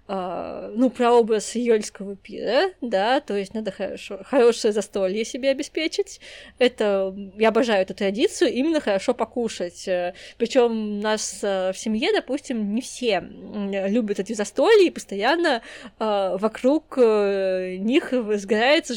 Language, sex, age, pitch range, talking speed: Russian, female, 20-39, 195-255 Hz, 115 wpm